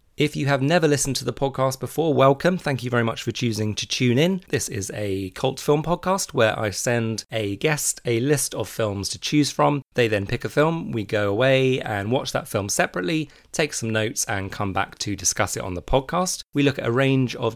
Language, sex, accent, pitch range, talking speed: English, male, British, 110-140 Hz, 230 wpm